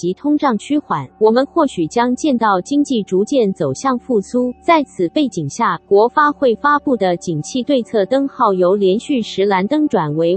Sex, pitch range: female, 190-270 Hz